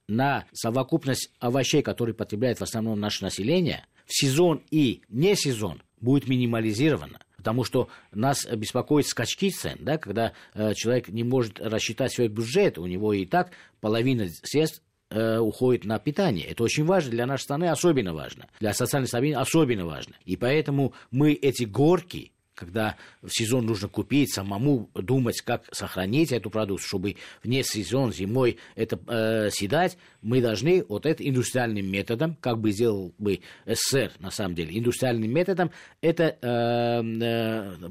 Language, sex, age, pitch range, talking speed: Russian, male, 50-69, 105-140 Hz, 145 wpm